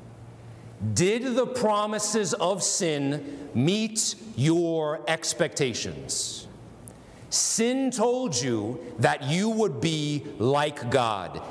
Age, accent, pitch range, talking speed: 40-59, American, 135-205 Hz, 90 wpm